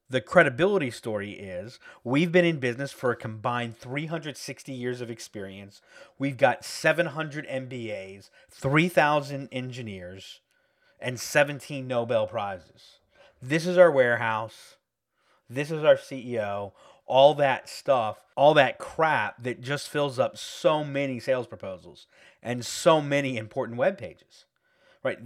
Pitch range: 120-160 Hz